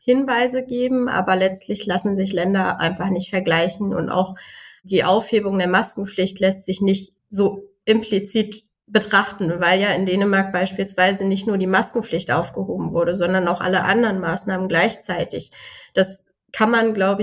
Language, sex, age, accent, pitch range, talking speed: German, female, 20-39, German, 180-210 Hz, 150 wpm